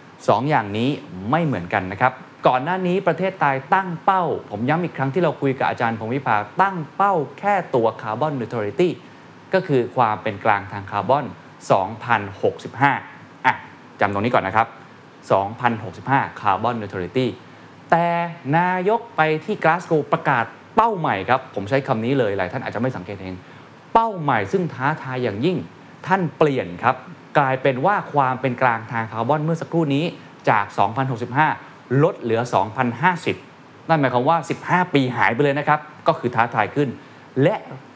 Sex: male